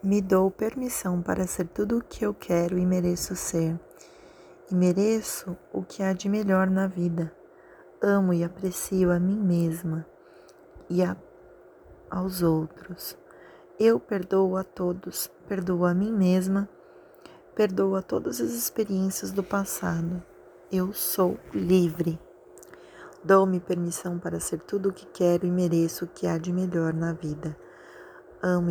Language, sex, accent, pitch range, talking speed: Portuguese, female, Brazilian, 170-190 Hz, 140 wpm